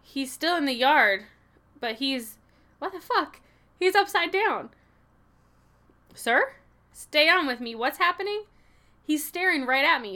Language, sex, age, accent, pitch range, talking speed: English, female, 10-29, American, 230-295 Hz, 150 wpm